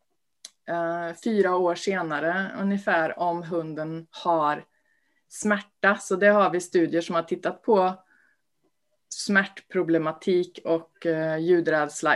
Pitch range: 170-210 Hz